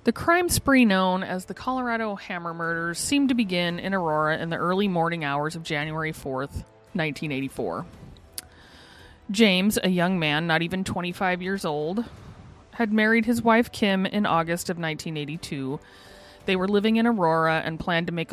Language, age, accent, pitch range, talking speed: English, 30-49, American, 155-205 Hz, 165 wpm